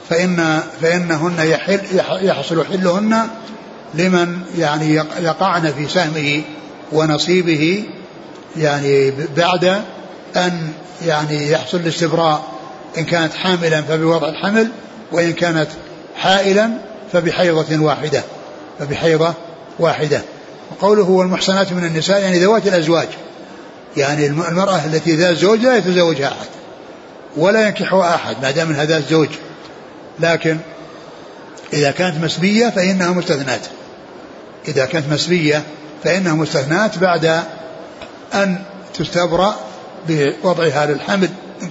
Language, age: Arabic, 60-79